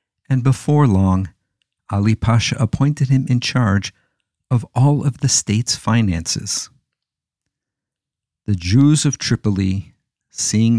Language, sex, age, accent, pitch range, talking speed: English, male, 50-69, American, 100-135 Hz, 110 wpm